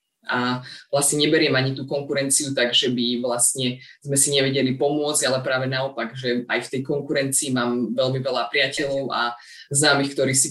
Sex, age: female, 20-39